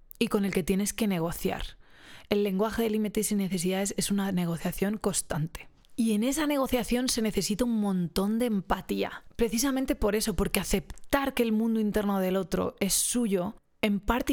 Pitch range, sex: 180-230 Hz, female